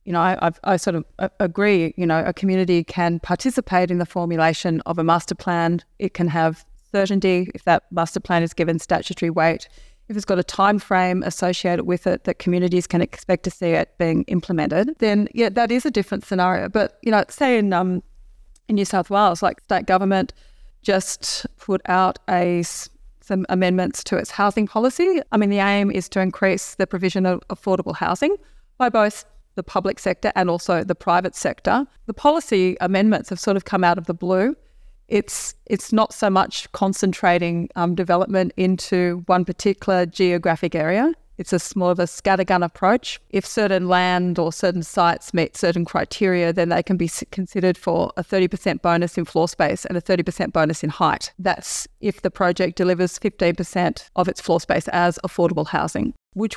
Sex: female